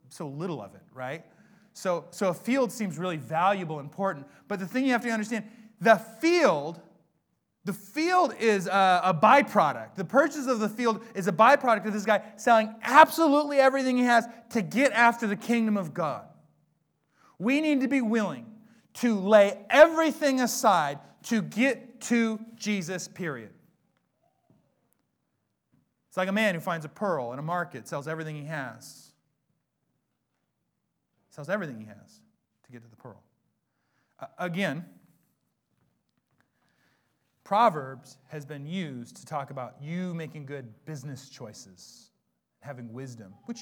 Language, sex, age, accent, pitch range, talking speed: English, male, 30-49, American, 155-225 Hz, 145 wpm